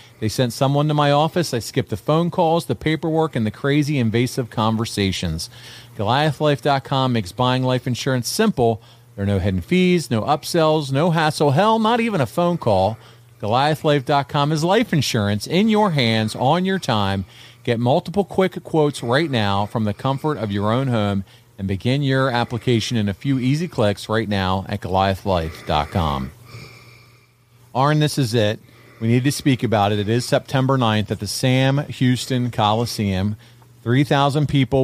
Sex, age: male, 40-59